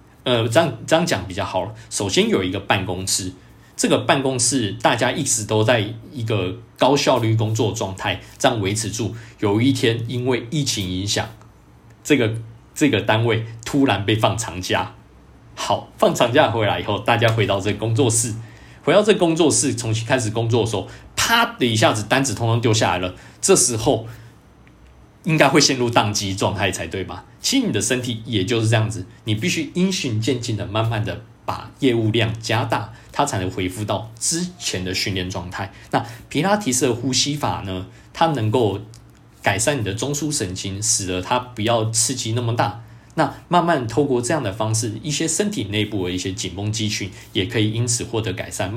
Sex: male